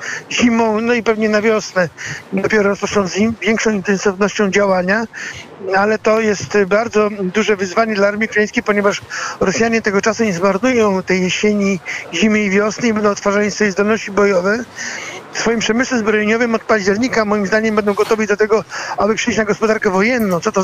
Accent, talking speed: native, 170 wpm